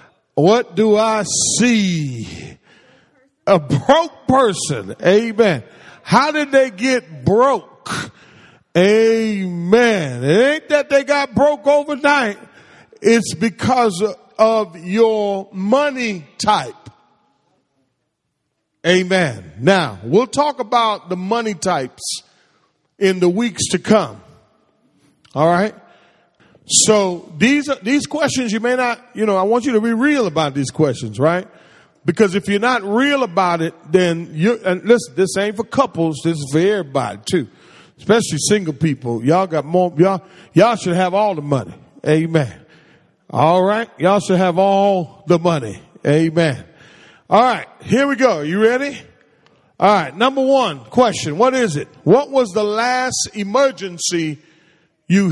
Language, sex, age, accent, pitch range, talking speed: English, male, 40-59, American, 165-235 Hz, 135 wpm